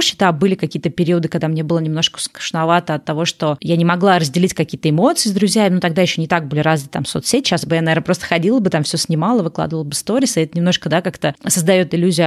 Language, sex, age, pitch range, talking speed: Russian, female, 20-39, 160-195 Hz, 250 wpm